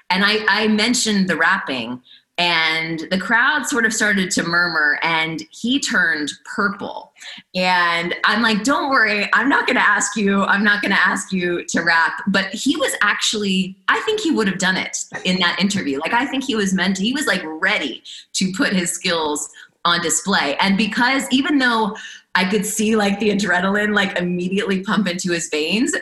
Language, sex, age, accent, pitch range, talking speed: English, female, 20-39, American, 160-210 Hz, 195 wpm